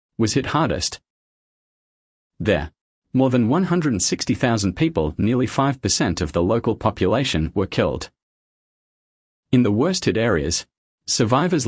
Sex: male